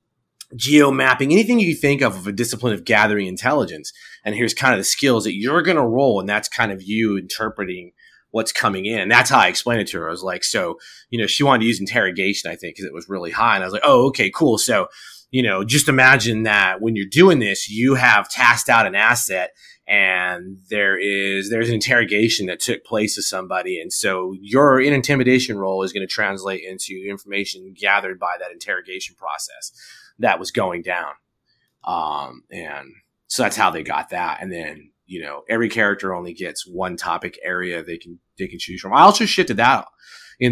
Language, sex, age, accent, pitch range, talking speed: English, male, 30-49, American, 95-130 Hz, 210 wpm